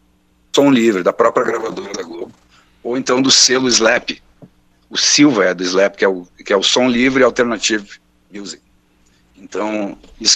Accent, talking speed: Brazilian, 170 wpm